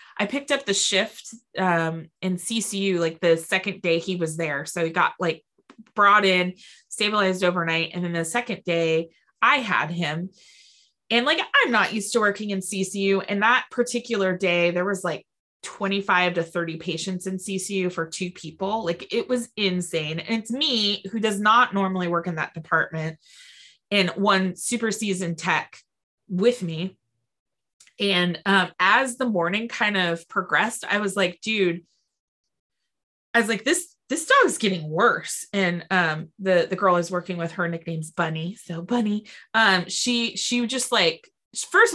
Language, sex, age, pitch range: English, female, 20-39, 175-225 Hz